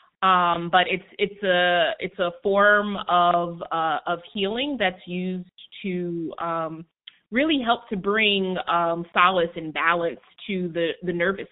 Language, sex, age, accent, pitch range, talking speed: English, female, 20-39, American, 170-195 Hz, 145 wpm